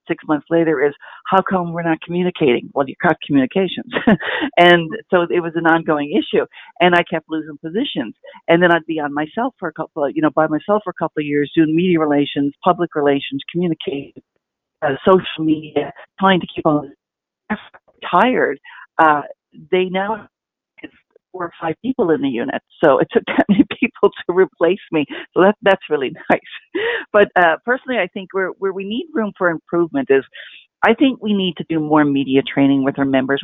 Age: 50-69